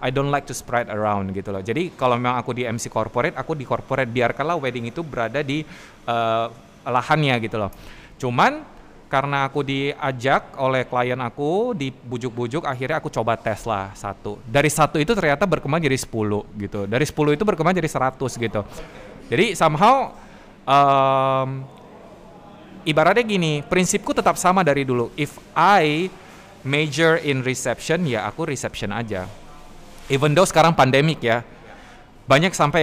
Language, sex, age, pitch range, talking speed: Indonesian, male, 20-39, 120-155 Hz, 150 wpm